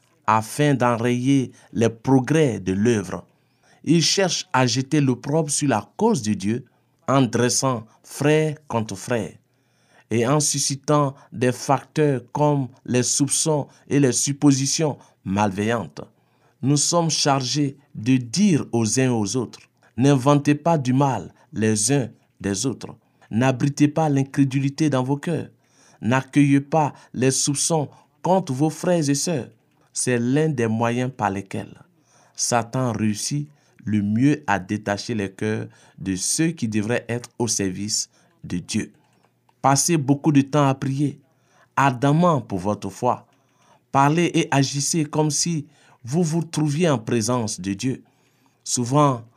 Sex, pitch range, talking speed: male, 120-145 Hz, 135 wpm